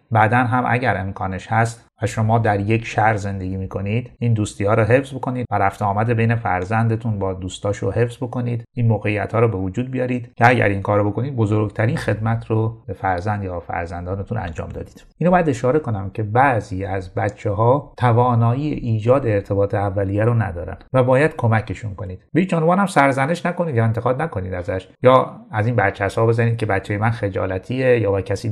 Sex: male